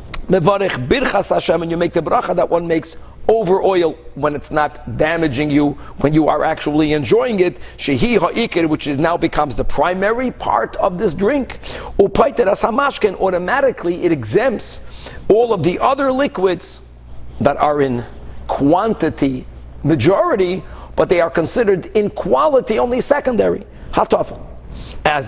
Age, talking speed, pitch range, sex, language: 50-69, 145 wpm, 155-215 Hz, male, English